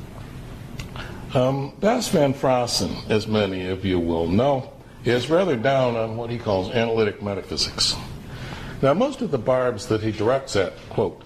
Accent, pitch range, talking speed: American, 105-130 Hz, 155 wpm